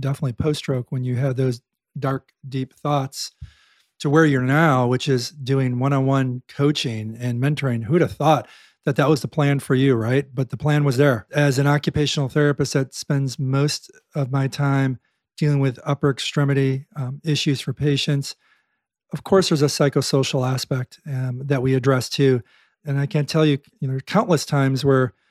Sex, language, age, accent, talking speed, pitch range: male, English, 40-59, American, 190 wpm, 135-155 Hz